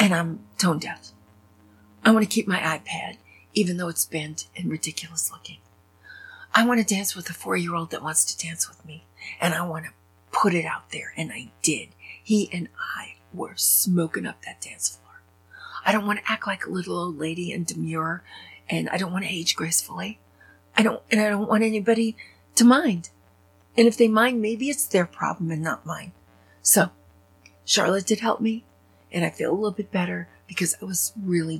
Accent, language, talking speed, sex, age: American, English, 205 wpm, female, 40-59